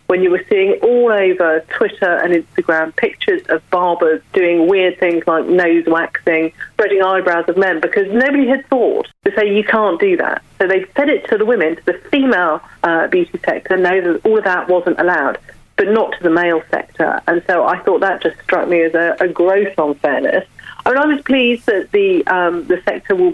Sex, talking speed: female, 215 wpm